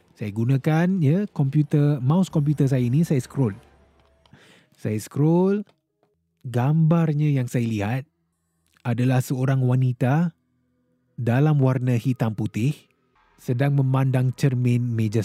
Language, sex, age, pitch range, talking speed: Malay, male, 30-49, 115-155 Hz, 105 wpm